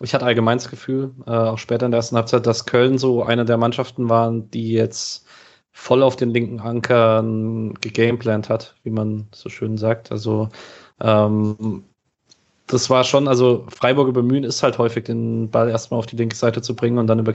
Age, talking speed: 20-39, 195 wpm